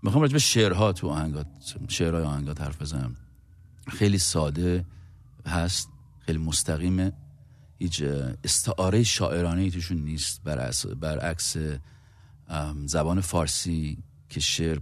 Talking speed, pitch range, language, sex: 95 wpm, 80-110 Hz, Persian, male